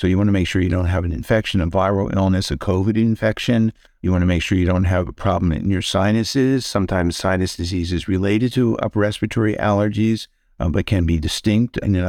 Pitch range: 95-110 Hz